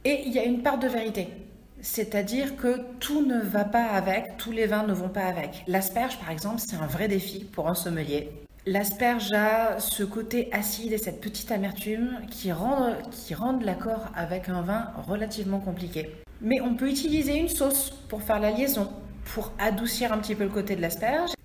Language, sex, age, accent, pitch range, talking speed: French, female, 40-59, French, 190-245 Hz, 200 wpm